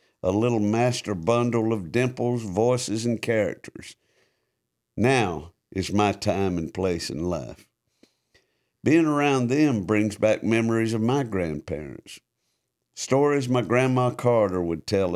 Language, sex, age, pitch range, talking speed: English, male, 60-79, 100-135 Hz, 125 wpm